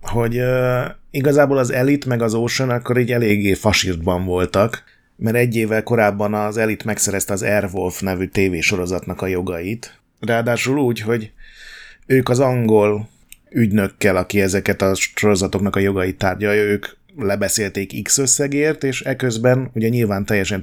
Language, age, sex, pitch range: Hungarian, 30-49, male, 100-120 Hz